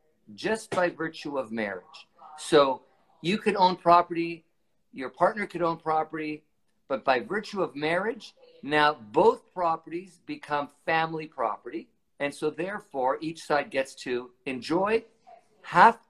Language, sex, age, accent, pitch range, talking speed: English, male, 50-69, American, 125-175 Hz, 130 wpm